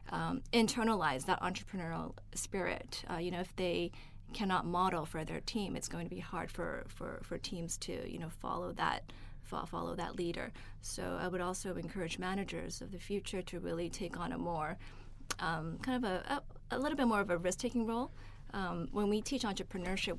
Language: English